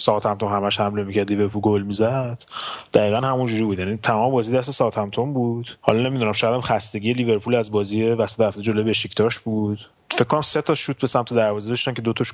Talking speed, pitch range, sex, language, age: 205 wpm, 105-120 Hz, male, Persian, 30-49